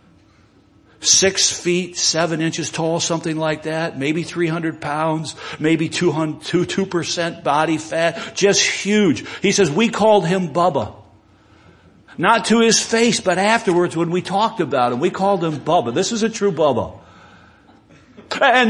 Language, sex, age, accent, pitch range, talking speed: English, male, 60-79, American, 150-220 Hz, 145 wpm